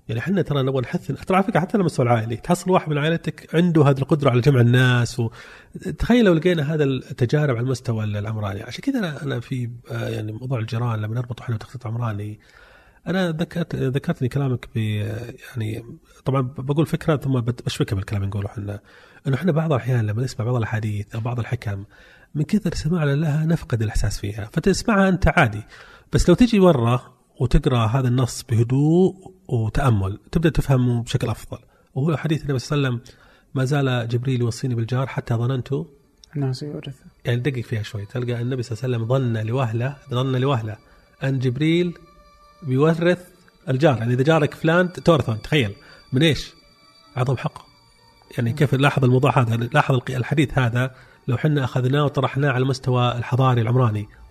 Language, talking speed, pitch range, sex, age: Arabic, 170 wpm, 120-155 Hz, male, 30-49